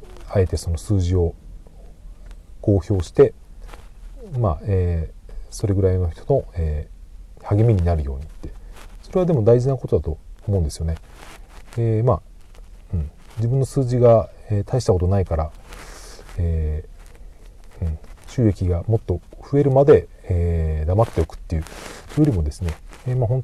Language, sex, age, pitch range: Japanese, male, 40-59, 80-110 Hz